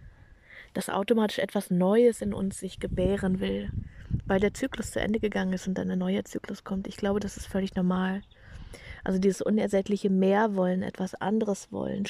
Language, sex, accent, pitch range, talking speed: German, female, German, 185-220 Hz, 175 wpm